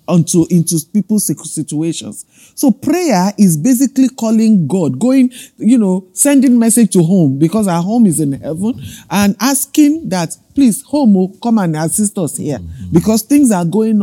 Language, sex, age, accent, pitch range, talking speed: English, male, 50-69, Nigerian, 165-225 Hz, 160 wpm